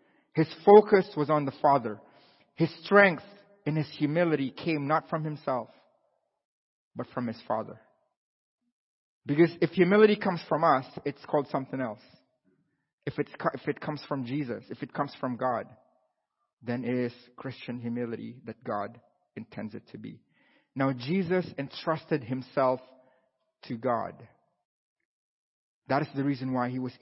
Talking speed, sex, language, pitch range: 140 wpm, male, English, 125-165 Hz